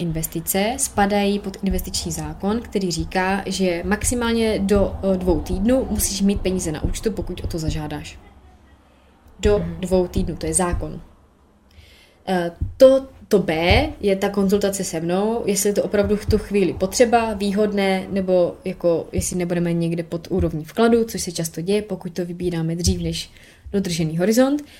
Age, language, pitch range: 20-39, Czech, 170-210 Hz